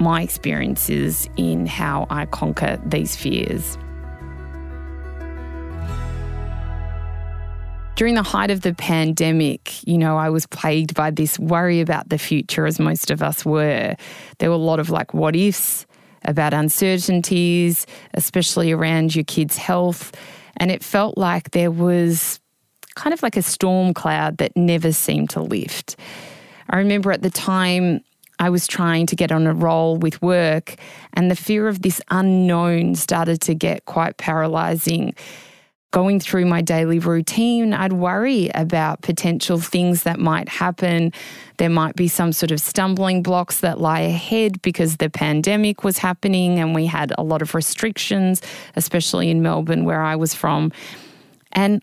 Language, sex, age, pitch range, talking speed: English, female, 20-39, 155-185 Hz, 155 wpm